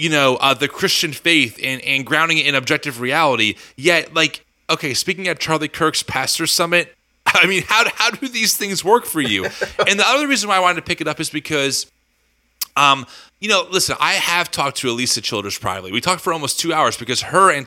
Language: English